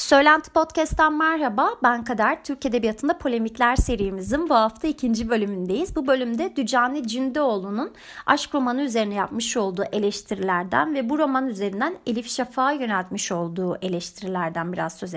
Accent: native